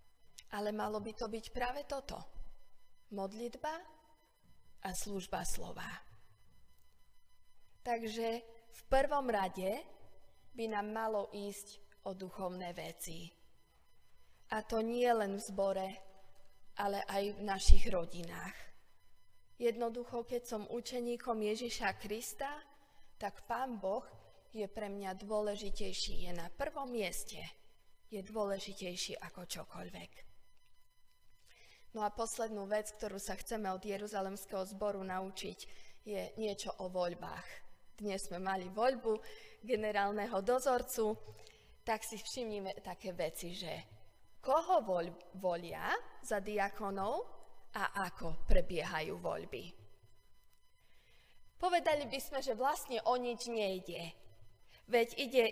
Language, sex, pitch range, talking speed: Slovak, female, 185-235 Hz, 105 wpm